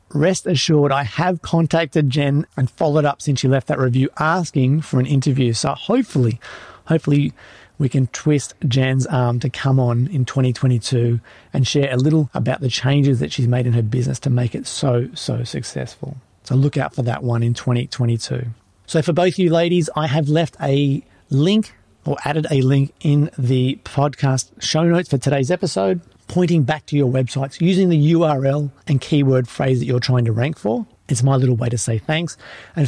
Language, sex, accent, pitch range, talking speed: English, male, Australian, 125-155 Hz, 190 wpm